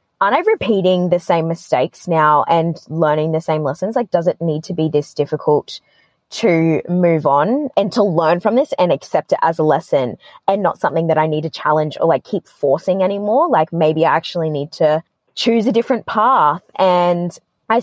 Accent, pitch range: Australian, 160-190 Hz